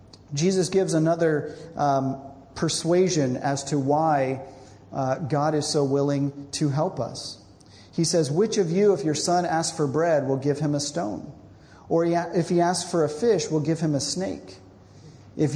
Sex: male